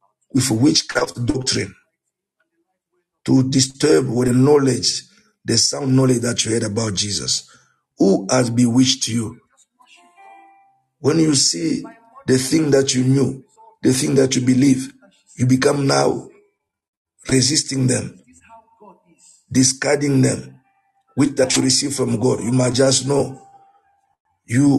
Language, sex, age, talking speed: English, male, 50-69, 125 wpm